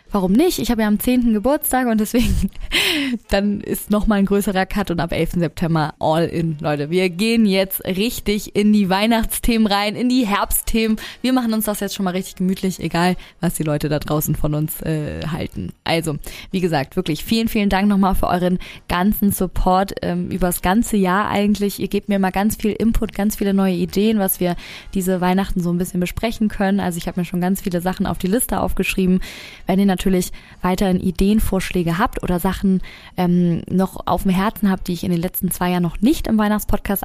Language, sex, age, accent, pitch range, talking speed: German, female, 20-39, German, 175-210 Hz, 215 wpm